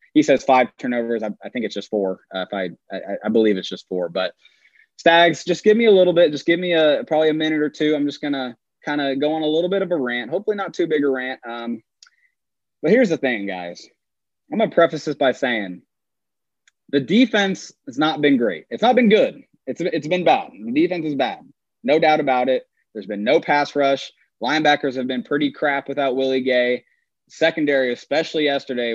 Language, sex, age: English, male, 20-39